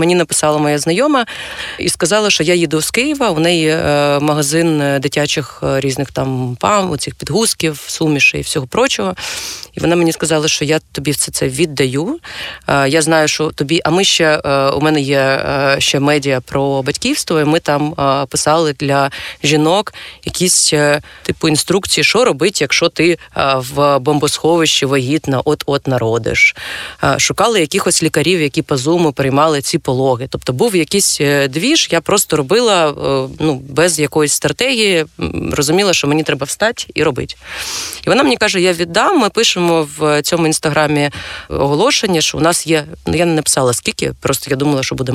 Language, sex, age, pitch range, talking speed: Ukrainian, female, 20-39, 145-175 Hz, 160 wpm